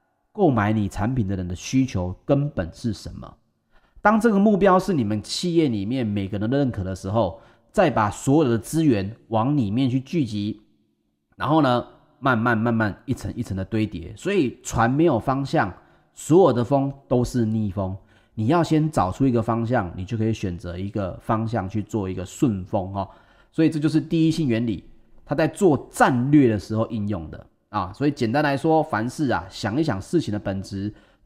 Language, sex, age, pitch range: Chinese, male, 30-49, 105-140 Hz